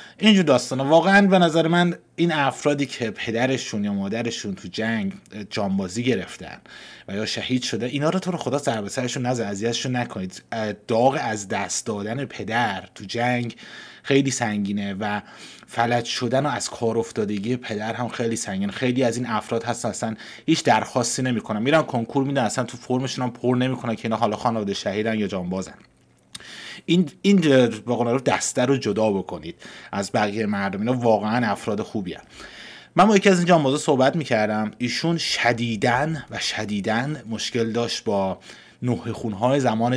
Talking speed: 155 wpm